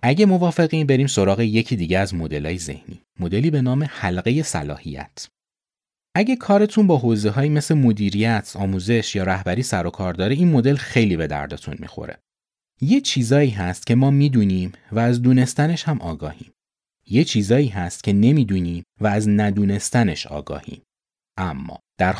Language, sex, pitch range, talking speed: Persian, male, 90-130 Hz, 150 wpm